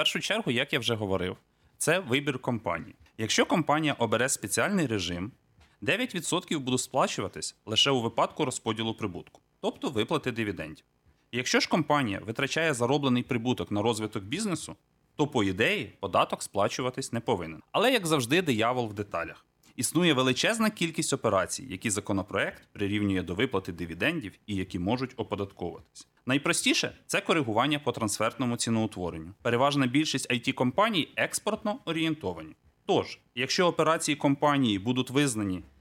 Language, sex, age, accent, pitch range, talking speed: Ukrainian, male, 30-49, native, 110-140 Hz, 135 wpm